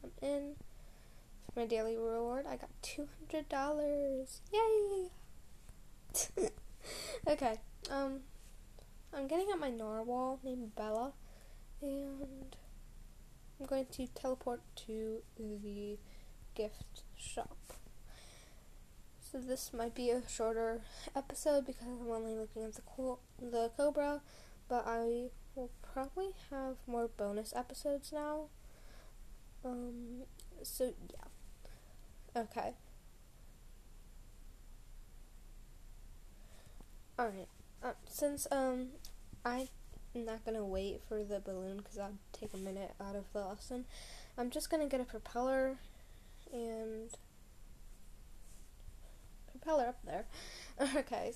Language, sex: English, female